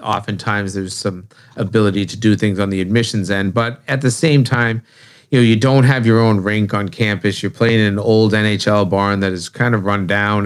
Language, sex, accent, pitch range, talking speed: English, male, American, 105-130 Hz, 225 wpm